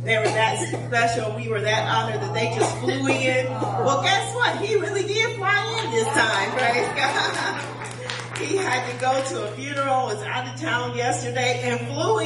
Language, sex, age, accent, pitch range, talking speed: English, female, 40-59, American, 115-130 Hz, 185 wpm